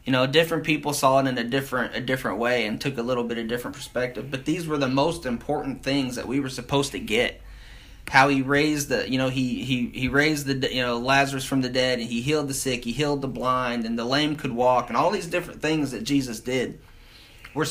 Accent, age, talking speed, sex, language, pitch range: American, 20-39, 245 wpm, male, English, 125-155 Hz